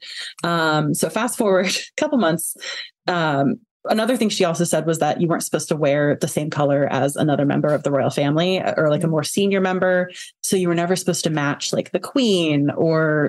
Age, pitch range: 20-39, 160-215 Hz